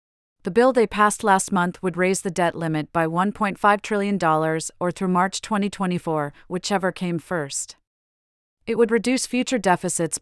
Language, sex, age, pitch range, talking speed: English, female, 40-59, 165-200 Hz, 155 wpm